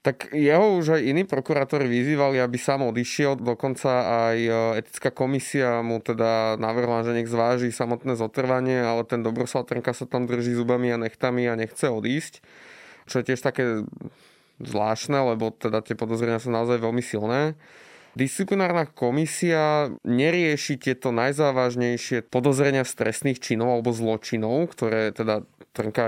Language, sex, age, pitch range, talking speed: Slovak, male, 20-39, 115-135 Hz, 140 wpm